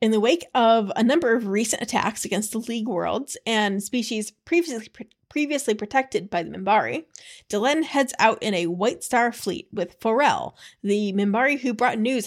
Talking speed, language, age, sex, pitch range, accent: 180 wpm, English, 30-49, female, 205-265 Hz, American